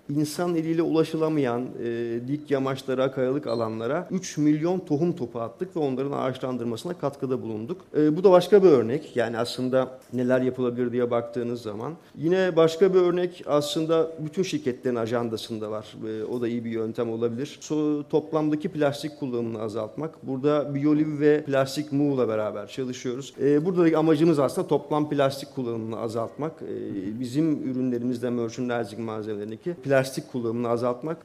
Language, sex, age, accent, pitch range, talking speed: Turkish, male, 40-59, native, 120-160 Hz, 150 wpm